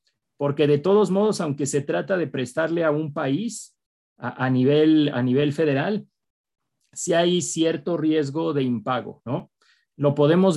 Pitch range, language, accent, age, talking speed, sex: 140-175 Hz, Spanish, Mexican, 40-59, 160 wpm, male